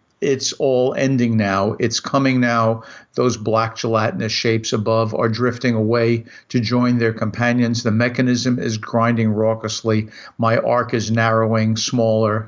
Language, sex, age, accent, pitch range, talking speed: English, male, 50-69, American, 110-130 Hz, 140 wpm